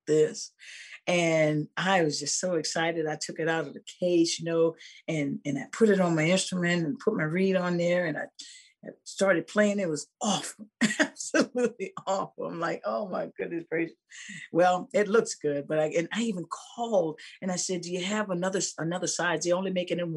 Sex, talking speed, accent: female, 205 wpm, American